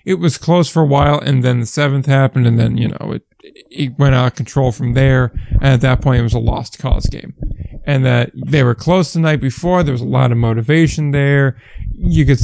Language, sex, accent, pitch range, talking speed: English, male, American, 125-155 Hz, 240 wpm